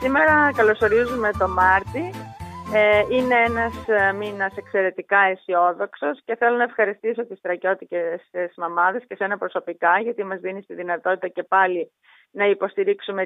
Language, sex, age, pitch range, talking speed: Greek, female, 30-49, 185-235 Hz, 125 wpm